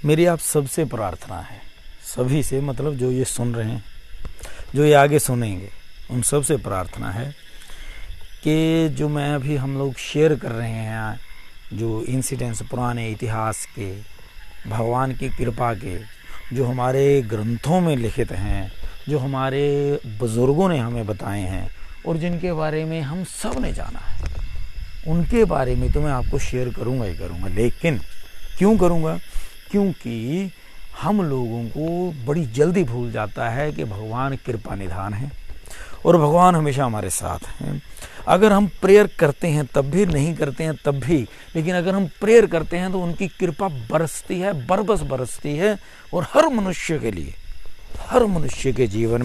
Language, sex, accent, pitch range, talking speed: Hindi, male, native, 105-155 Hz, 160 wpm